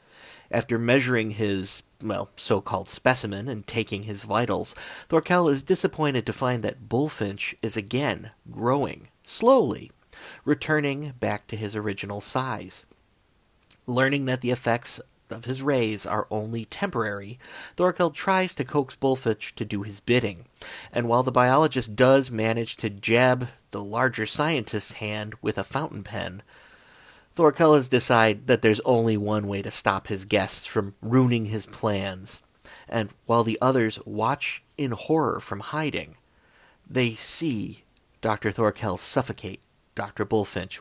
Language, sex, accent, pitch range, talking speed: English, male, American, 105-130 Hz, 140 wpm